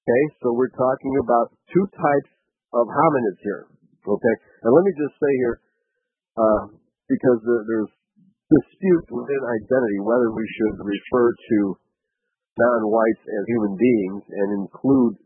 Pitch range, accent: 115-145 Hz, American